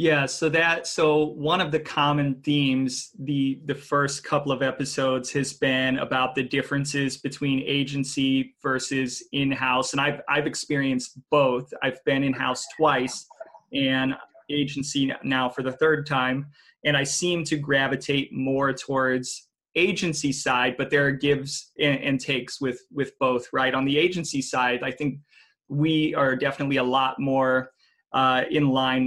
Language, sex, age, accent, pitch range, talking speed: English, male, 20-39, American, 130-145 Hz, 155 wpm